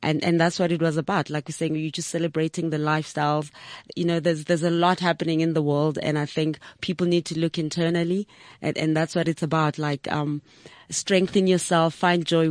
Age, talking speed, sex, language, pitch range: 30-49, 215 wpm, female, English, 155-175 Hz